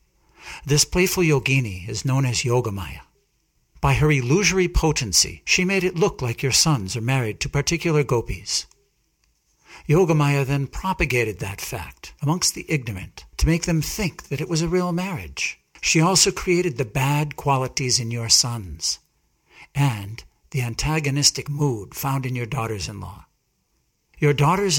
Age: 60-79